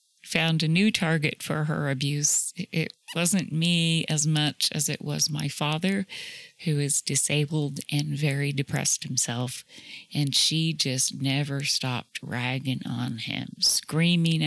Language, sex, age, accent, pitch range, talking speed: English, female, 40-59, American, 140-170 Hz, 135 wpm